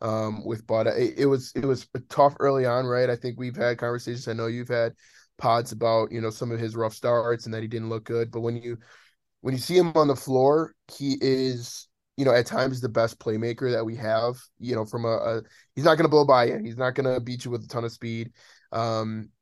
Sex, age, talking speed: male, 20-39, 255 wpm